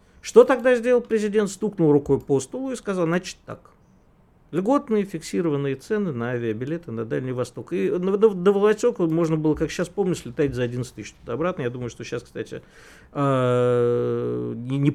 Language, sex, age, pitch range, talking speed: Russian, male, 50-69, 125-175 Hz, 155 wpm